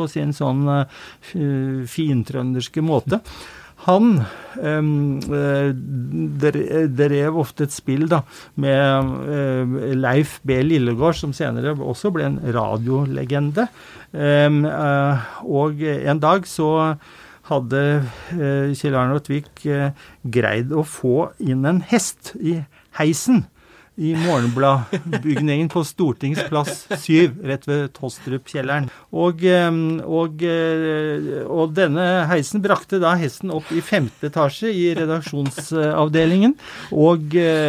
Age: 50-69